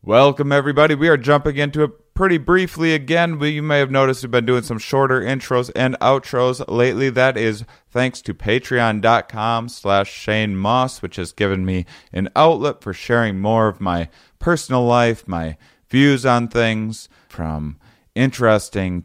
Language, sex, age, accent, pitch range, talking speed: English, male, 30-49, American, 95-130 Hz, 160 wpm